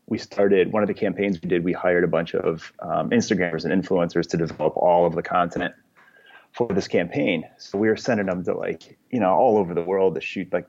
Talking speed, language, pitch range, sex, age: 235 wpm, English, 90-105 Hz, male, 30-49